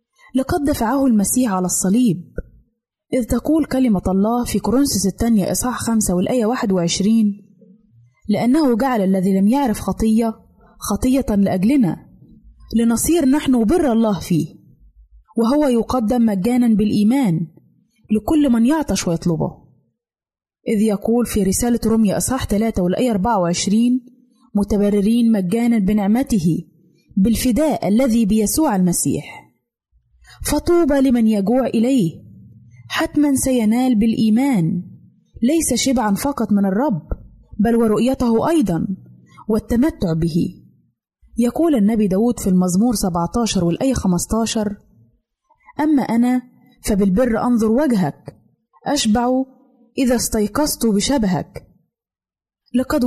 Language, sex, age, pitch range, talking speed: Arabic, female, 20-39, 195-255 Hz, 100 wpm